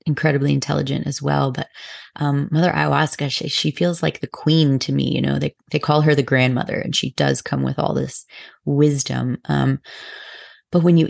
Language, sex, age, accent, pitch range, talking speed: English, female, 30-49, American, 130-155 Hz, 195 wpm